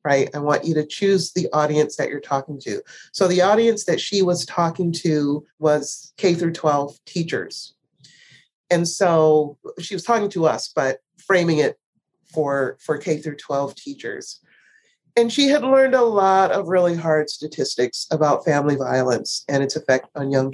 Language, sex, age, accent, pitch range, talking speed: English, female, 40-59, American, 155-210 Hz, 170 wpm